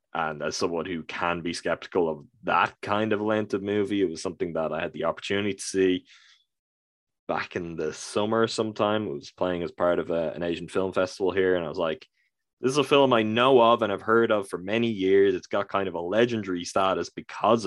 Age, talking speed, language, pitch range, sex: 20-39, 230 wpm, English, 85-110 Hz, male